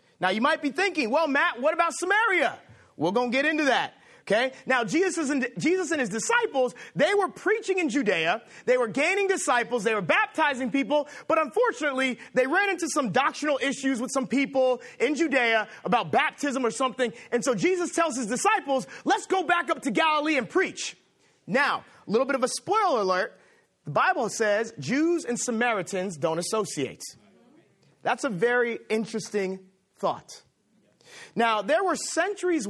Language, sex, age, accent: English, male, 30-49, American